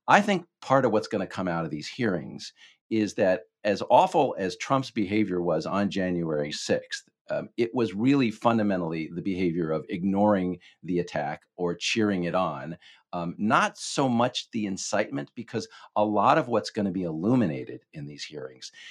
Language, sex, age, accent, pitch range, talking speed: English, male, 50-69, American, 90-120 Hz, 180 wpm